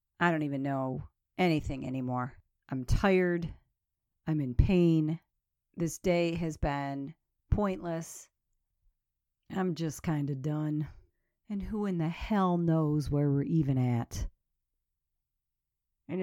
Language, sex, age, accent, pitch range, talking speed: English, female, 50-69, American, 160-260 Hz, 120 wpm